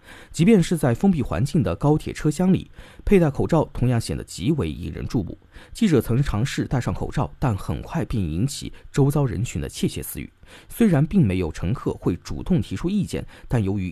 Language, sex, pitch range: Chinese, male, 105-165 Hz